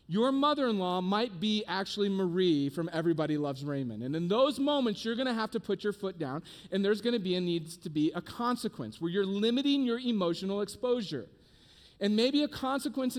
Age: 40-59